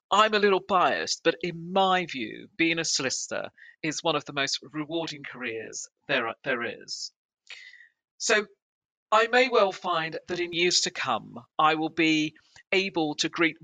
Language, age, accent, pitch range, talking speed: English, 50-69, British, 145-180 Hz, 165 wpm